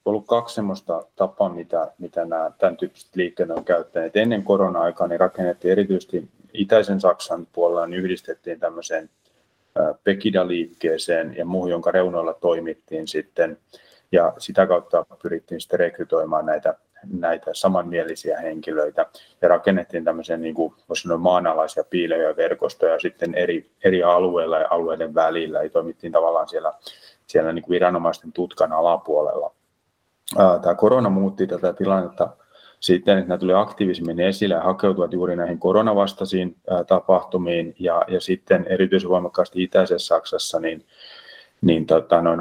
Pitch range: 85-100 Hz